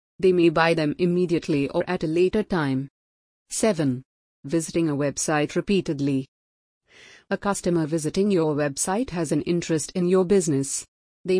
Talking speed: 140 wpm